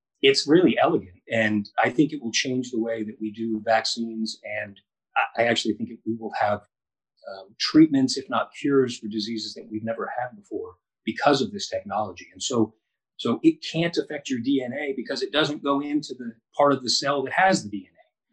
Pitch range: 110-170 Hz